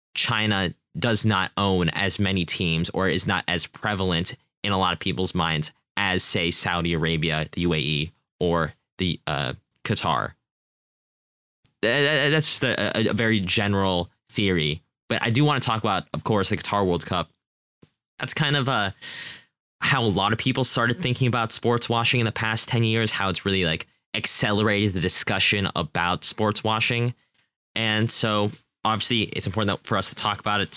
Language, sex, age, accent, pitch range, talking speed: English, male, 10-29, American, 90-115 Hz, 170 wpm